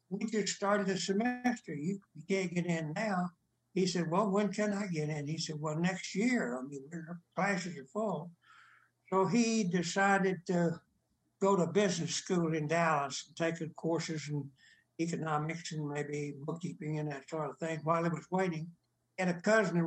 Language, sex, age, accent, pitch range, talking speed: English, male, 60-79, American, 165-195 Hz, 180 wpm